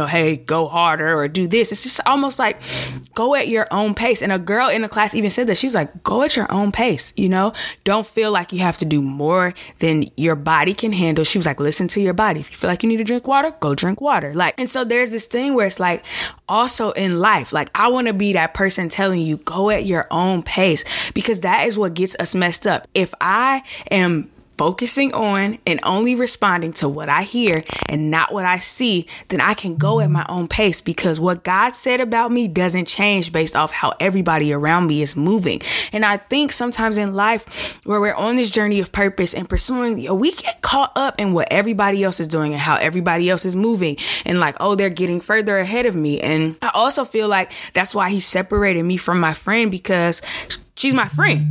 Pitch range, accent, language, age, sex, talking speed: 170-225 Hz, American, English, 20-39, female, 230 wpm